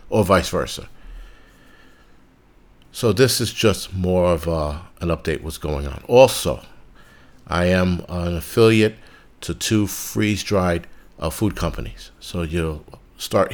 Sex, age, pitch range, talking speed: male, 50-69, 80-95 Hz, 130 wpm